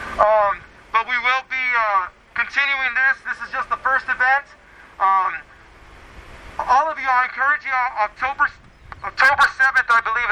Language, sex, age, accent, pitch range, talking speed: English, male, 40-59, American, 235-290 Hz, 155 wpm